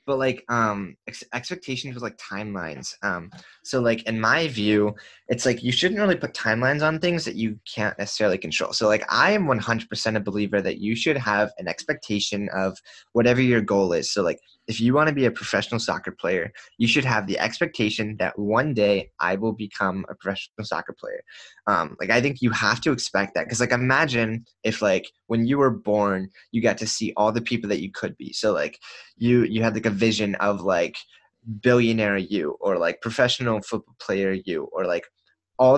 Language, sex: English, male